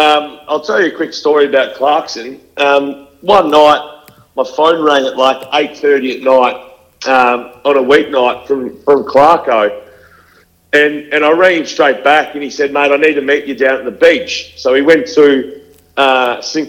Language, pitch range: English, 140-160 Hz